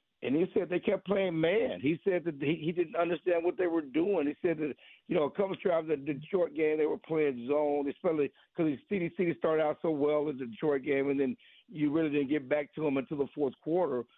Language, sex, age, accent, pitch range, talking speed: English, male, 50-69, American, 130-175 Hz, 265 wpm